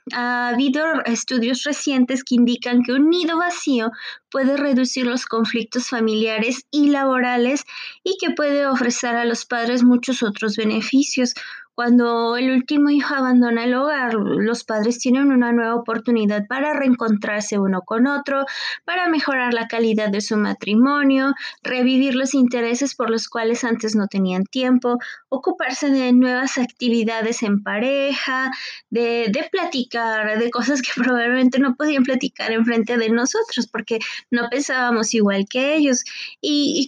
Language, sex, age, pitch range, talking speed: Spanish, female, 20-39, 230-280 Hz, 145 wpm